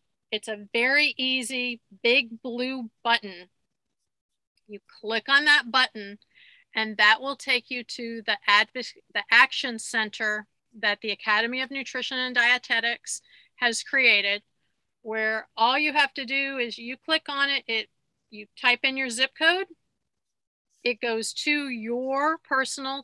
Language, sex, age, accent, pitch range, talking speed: English, female, 40-59, American, 220-270 Hz, 140 wpm